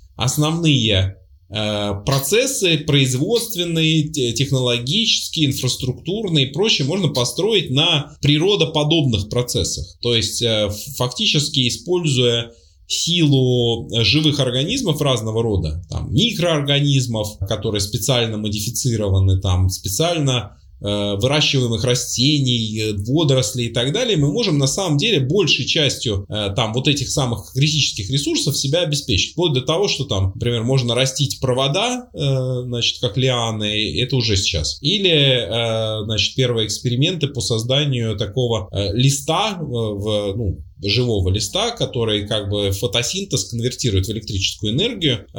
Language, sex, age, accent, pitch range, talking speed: Russian, male, 20-39, native, 105-145 Hz, 110 wpm